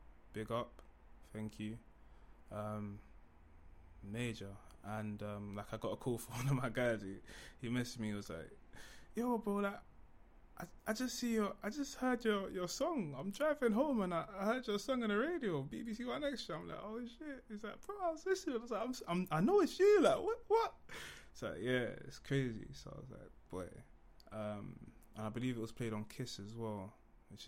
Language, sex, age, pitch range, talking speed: English, male, 20-39, 105-150 Hz, 215 wpm